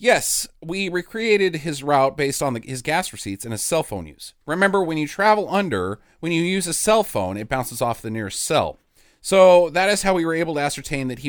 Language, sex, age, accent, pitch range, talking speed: English, male, 30-49, American, 115-165 Hz, 230 wpm